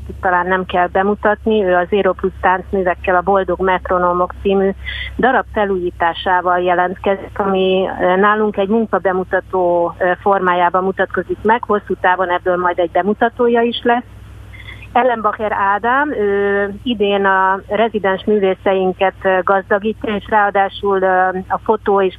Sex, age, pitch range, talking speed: female, 30-49, 185-210 Hz, 120 wpm